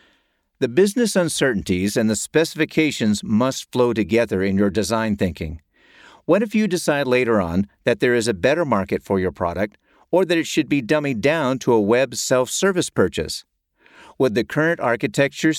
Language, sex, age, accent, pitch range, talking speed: English, male, 50-69, American, 105-150 Hz, 170 wpm